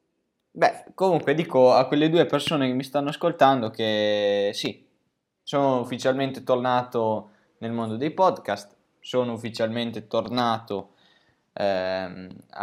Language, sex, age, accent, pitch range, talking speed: Italian, male, 10-29, native, 100-125 Hz, 115 wpm